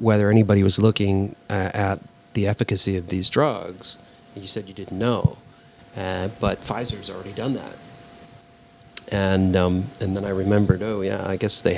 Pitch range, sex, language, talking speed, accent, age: 95-115 Hz, male, English, 170 wpm, American, 40-59